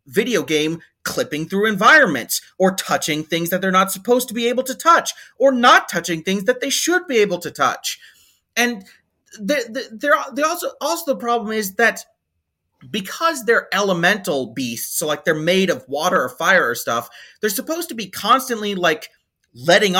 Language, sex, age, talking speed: English, male, 30-49, 175 wpm